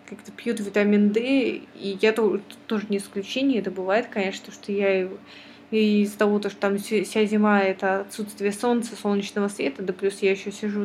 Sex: female